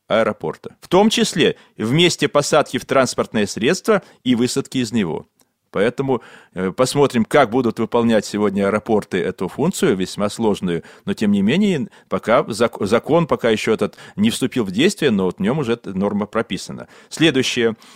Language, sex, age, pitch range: Russian, male, 30-49, 110-145 Hz